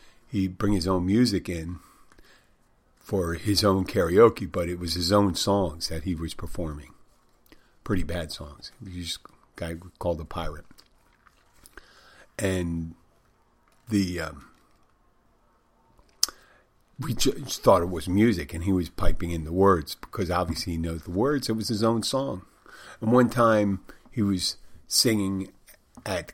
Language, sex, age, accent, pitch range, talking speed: English, male, 50-69, American, 85-100 Hz, 150 wpm